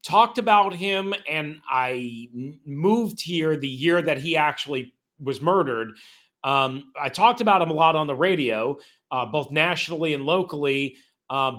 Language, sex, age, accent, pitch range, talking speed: English, male, 40-59, American, 135-170 Hz, 155 wpm